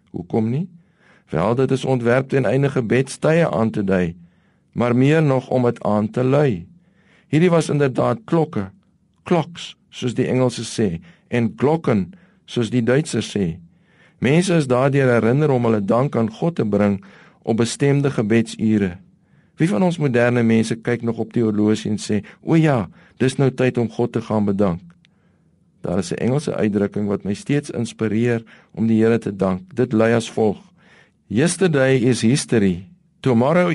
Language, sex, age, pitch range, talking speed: English, male, 50-69, 110-145 Hz, 165 wpm